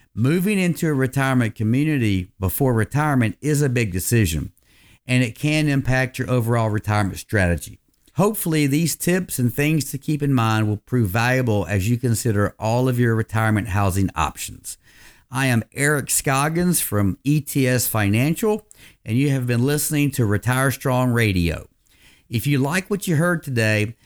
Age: 50-69